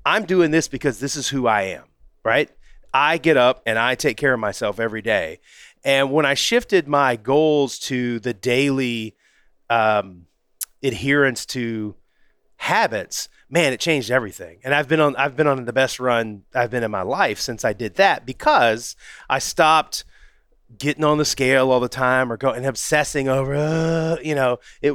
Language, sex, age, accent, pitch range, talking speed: English, male, 30-49, American, 115-145 Hz, 180 wpm